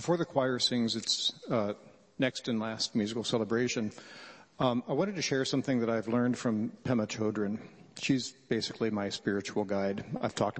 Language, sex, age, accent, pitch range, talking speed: English, male, 50-69, American, 115-140 Hz, 170 wpm